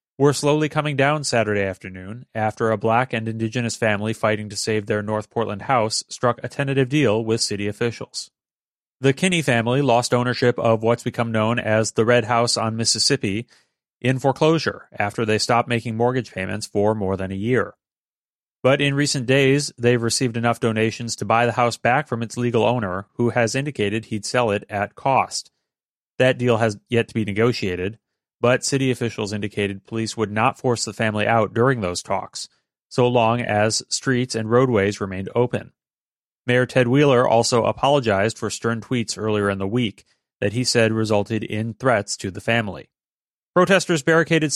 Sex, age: male, 30-49